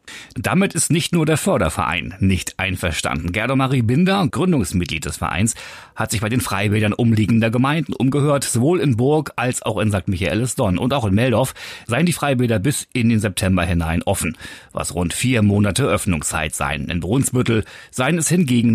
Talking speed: 175 wpm